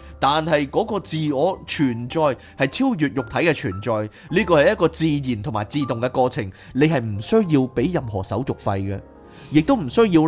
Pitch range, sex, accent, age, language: 110-170 Hz, male, native, 20-39, Chinese